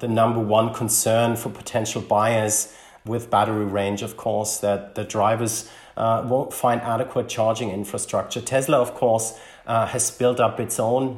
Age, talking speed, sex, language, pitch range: 30-49, 160 wpm, male, English, 110-130 Hz